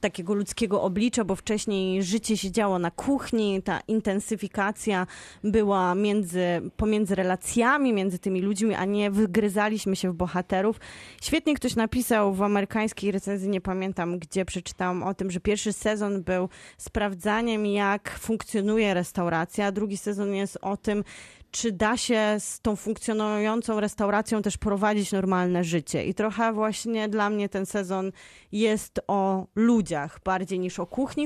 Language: Polish